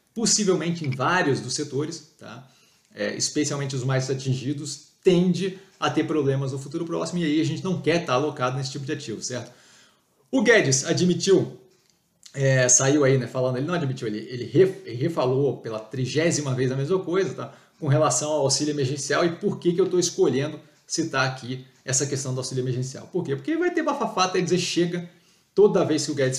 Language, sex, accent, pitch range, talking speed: Portuguese, male, Brazilian, 130-170 Hz, 200 wpm